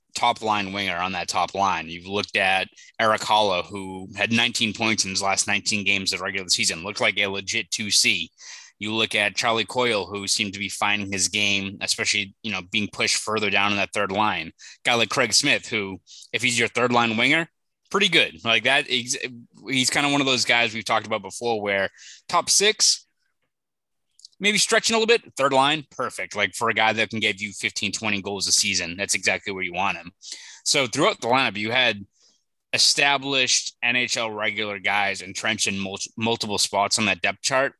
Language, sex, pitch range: English, male, 100-120 Hz